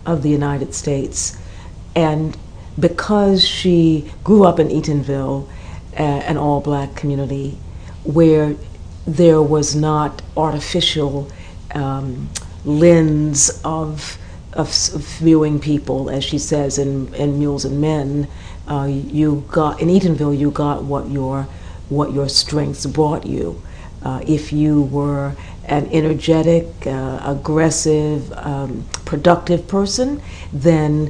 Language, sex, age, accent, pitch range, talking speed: English, female, 50-69, American, 140-160 Hz, 120 wpm